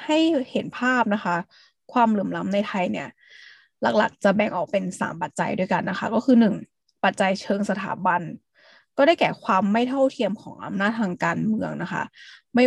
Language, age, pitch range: Thai, 20-39, 175-225 Hz